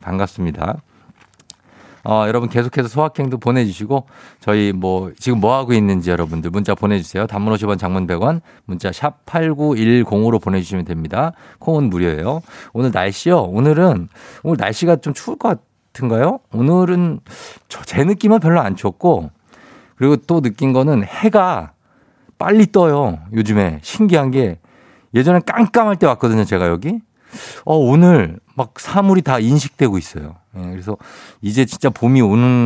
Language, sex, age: Korean, male, 50-69